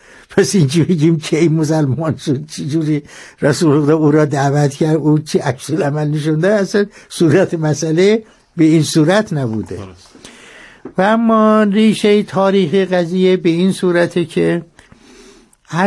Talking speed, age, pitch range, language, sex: 130 wpm, 60-79, 135-185 Hz, Persian, male